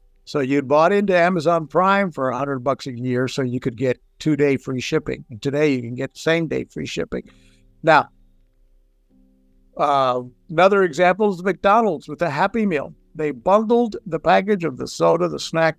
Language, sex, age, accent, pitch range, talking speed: English, male, 60-79, American, 135-175 Hz, 165 wpm